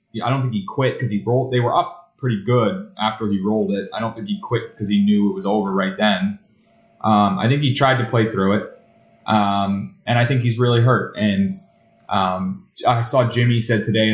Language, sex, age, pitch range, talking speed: English, male, 20-39, 105-125 Hz, 225 wpm